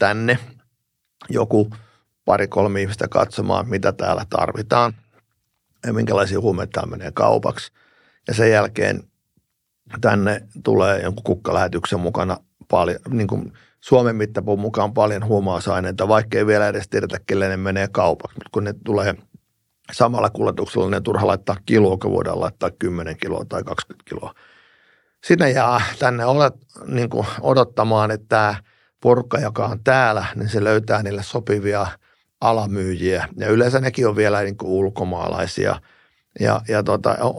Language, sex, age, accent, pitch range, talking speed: Finnish, male, 50-69, native, 100-120 Hz, 135 wpm